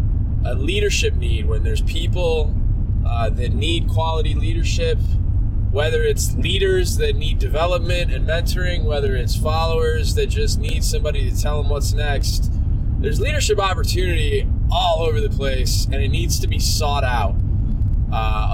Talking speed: 145 wpm